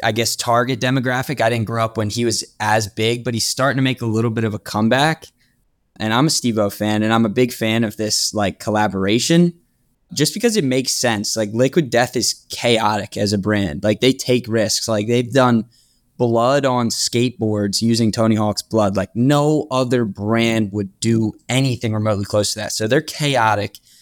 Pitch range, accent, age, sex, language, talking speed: 110-130 Hz, American, 20-39, male, English, 200 wpm